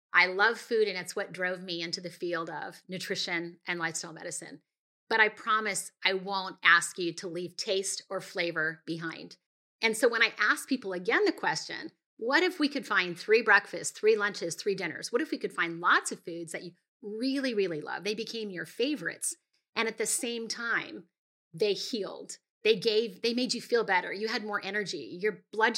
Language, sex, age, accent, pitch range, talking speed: English, female, 30-49, American, 175-235 Hz, 200 wpm